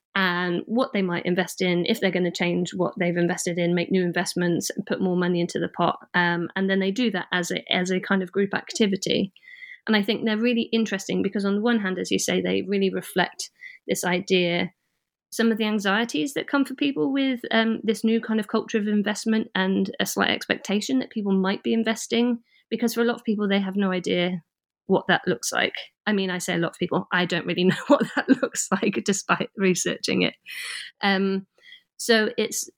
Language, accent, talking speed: English, British, 220 wpm